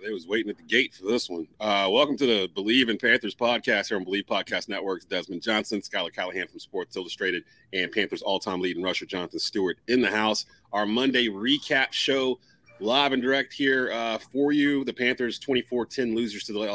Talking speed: 200 wpm